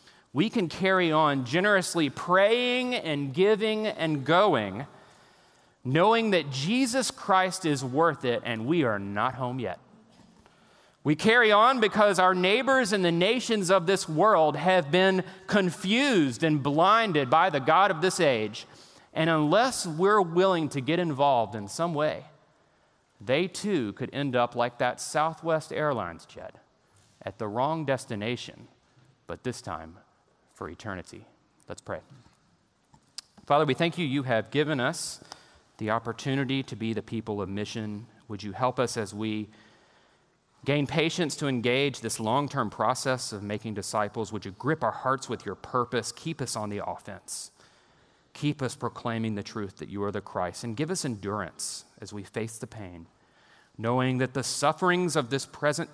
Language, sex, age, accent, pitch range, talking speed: English, male, 30-49, American, 110-170 Hz, 160 wpm